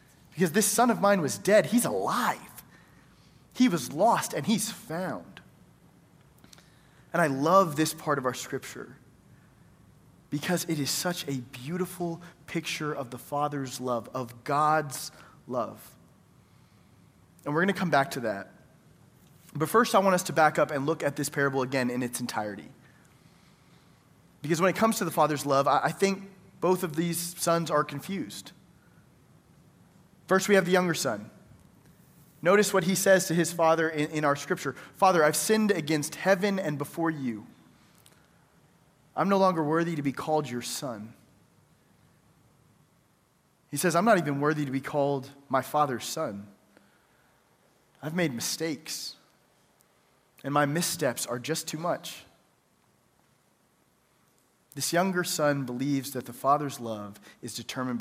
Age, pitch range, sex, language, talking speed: 30-49, 135-175 Hz, male, English, 150 wpm